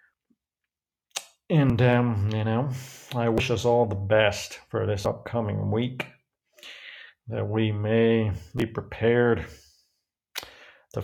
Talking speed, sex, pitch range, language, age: 110 wpm, male, 95-115 Hz, English, 50-69